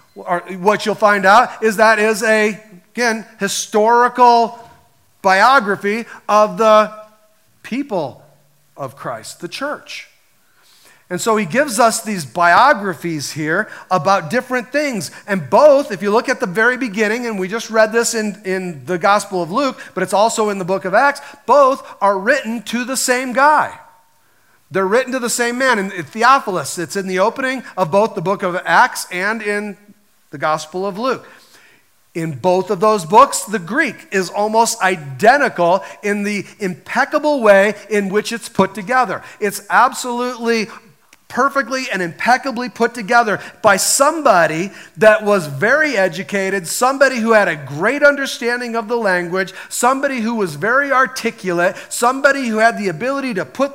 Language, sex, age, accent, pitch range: Japanese, male, 40-59, American, 190-245 Hz